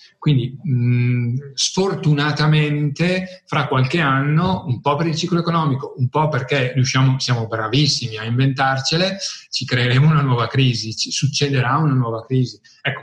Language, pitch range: Italian, 120-145 Hz